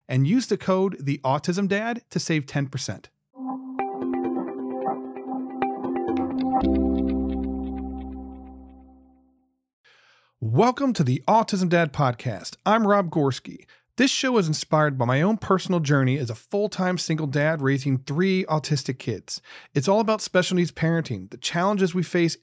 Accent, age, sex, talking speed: American, 40-59, male, 125 wpm